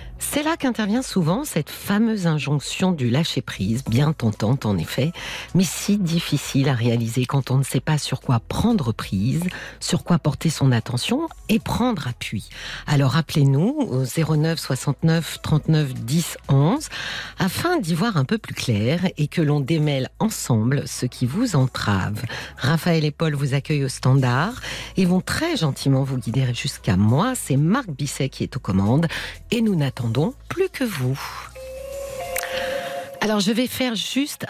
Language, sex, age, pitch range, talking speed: French, female, 50-69, 140-185 Hz, 160 wpm